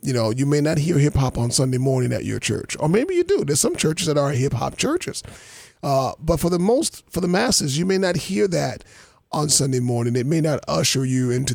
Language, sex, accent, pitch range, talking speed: English, male, American, 130-165 Hz, 250 wpm